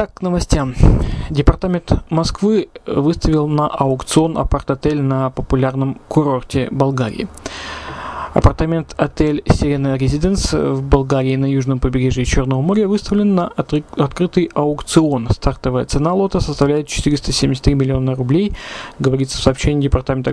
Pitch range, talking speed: 135-160 Hz, 120 wpm